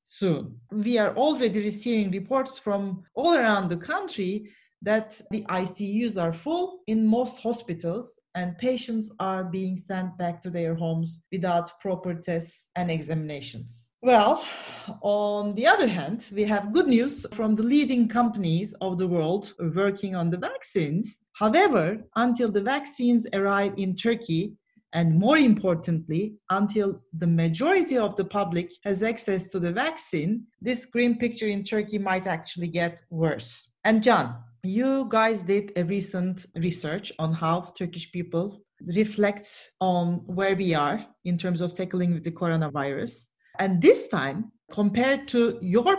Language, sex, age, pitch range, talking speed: English, female, 40-59, 175-230 Hz, 145 wpm